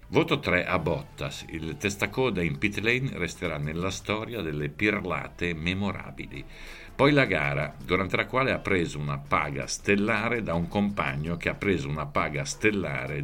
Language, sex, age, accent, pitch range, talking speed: Italian, male, 50-69, native, 75-100 Hz, 160 wpm